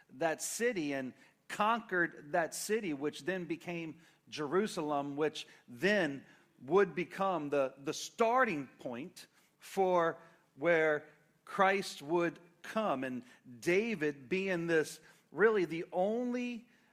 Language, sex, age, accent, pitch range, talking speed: English, male, 40-59, American, 155-200 Hz, 105 wpm